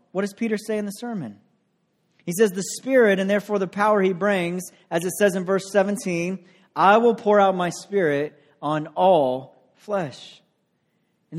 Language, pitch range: English, 180-220 Hz